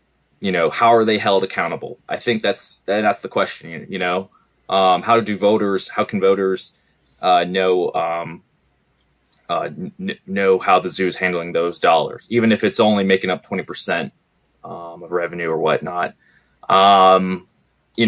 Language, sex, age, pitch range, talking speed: English, male, 20-39, 90-115 Hz, 165 wpm